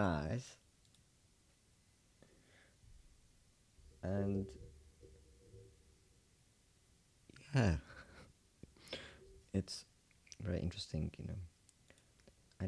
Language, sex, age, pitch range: English, male, 30-49, 80-100 Hz